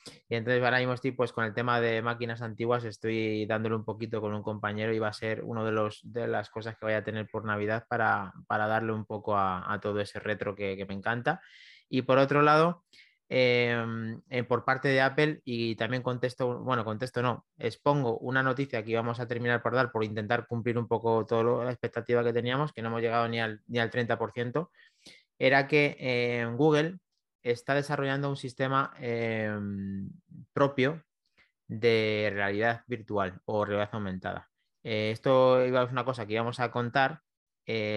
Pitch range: 110-130 Hz